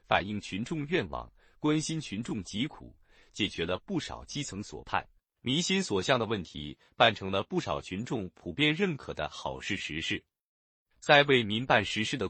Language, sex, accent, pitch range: Chinese, male, native, 90-150 Hz